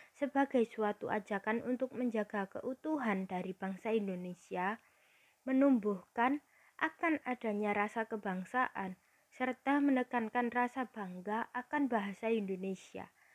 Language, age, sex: Indonesian, 20-39, female